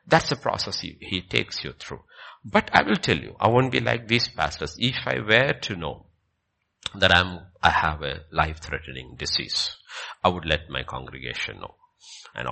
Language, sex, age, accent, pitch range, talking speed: English, male, 50-69, Indian, 70-95 Hz, 180 wpm